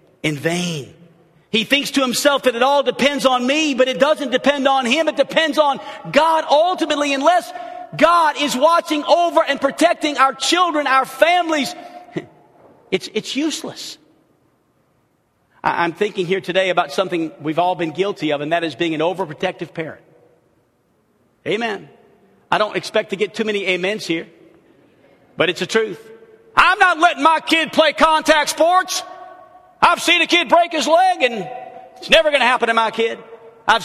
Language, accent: English, American